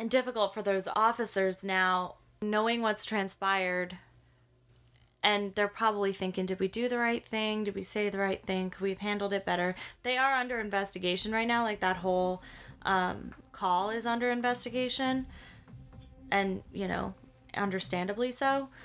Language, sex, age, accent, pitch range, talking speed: English, female, 20-39, American, 185-210 Hz, 155 wpm